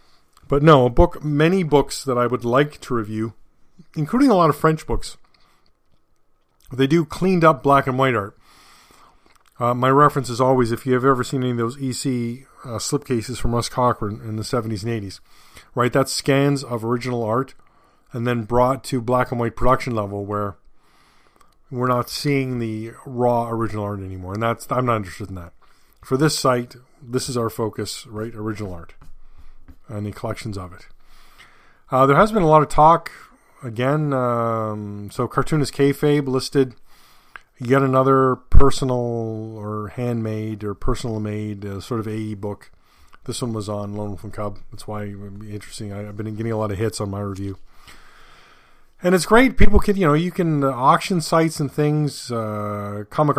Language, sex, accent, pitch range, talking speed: English, male, American, 110-135 Hz, 180 wpm